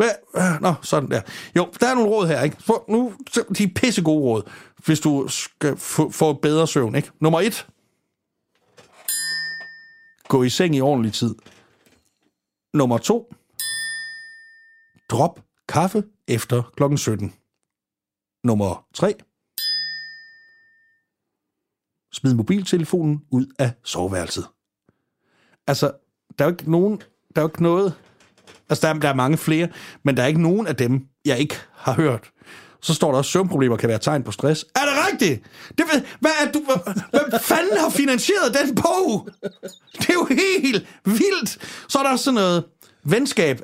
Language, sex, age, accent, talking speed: Danish, male, 60-79, native, 150 wpm